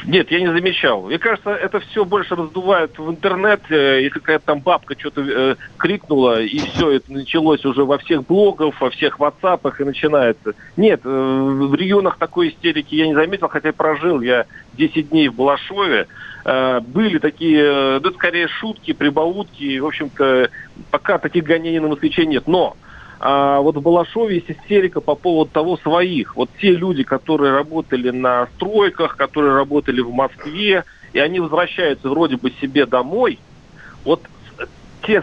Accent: native